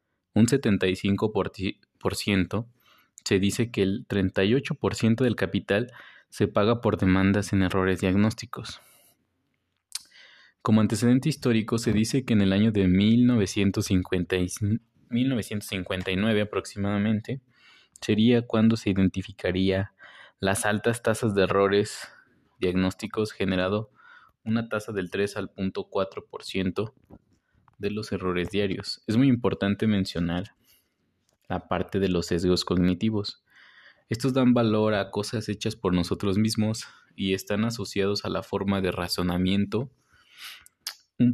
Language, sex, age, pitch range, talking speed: Spanish, male, 20-39, 95-110 Hz, 115 wpm